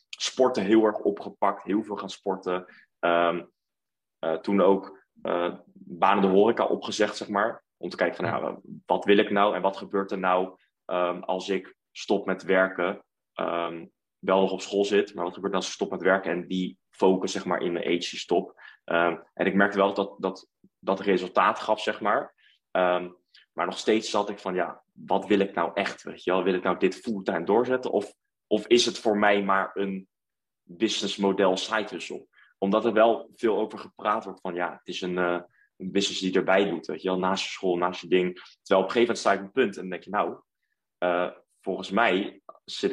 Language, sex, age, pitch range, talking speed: Dutch, male, 20-39, 90-100 Hz, 205 wpm